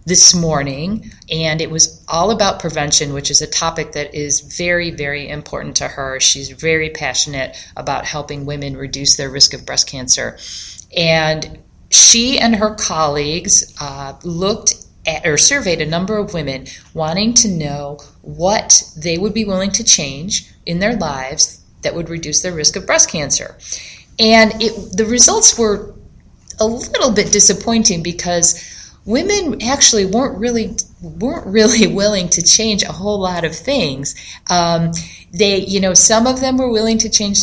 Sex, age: female, 40-59